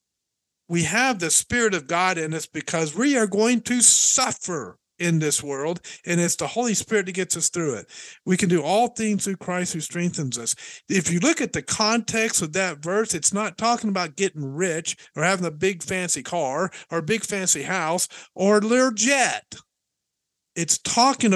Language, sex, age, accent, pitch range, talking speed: English, male, 50-69, American, 165-225 Hz, 195 wpm